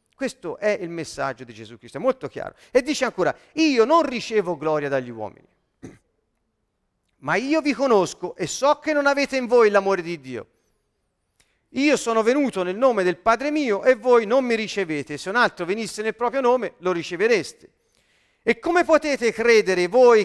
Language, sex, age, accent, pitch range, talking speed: Italian, male, 40-59, native, 190-265 Hz, 180 wpm